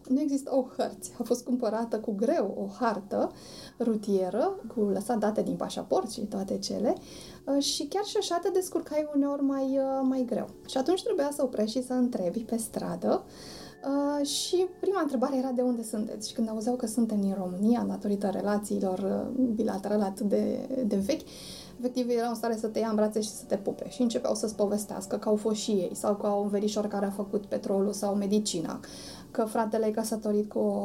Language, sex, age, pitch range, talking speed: Romanian, female, 20-39, 210-250 Hz, 195 wpm